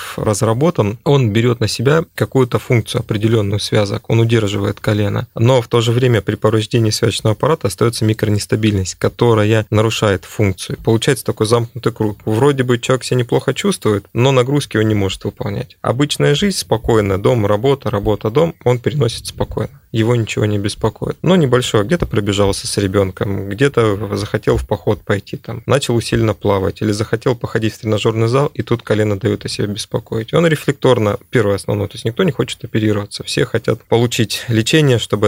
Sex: male